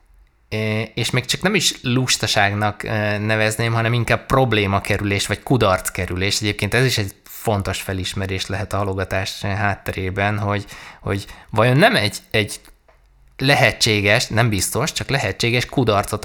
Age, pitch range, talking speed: 20-39, 100-120 Hz, 125 wpm